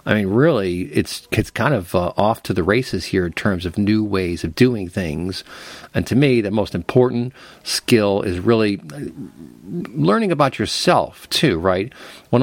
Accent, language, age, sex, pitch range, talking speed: American, English, 40-59, male, 95-115 Hz, 175 wpm